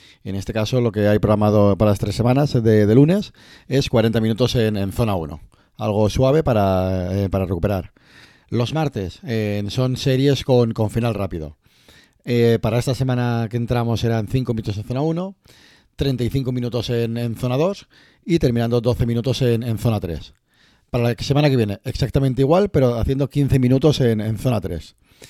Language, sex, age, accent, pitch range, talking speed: Spanish, male, 40-59, Spanish, 105-125 Hz, 185 wpm